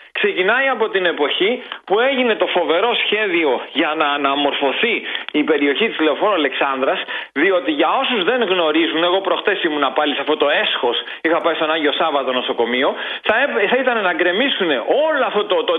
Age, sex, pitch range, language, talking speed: 40-59, male, 185-285 Hz, Greek, 165 wpm